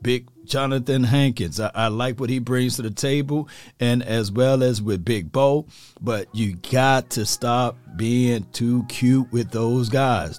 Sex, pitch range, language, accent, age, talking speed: male, 120-140 Hz, English, American, 40-59, 175 wpm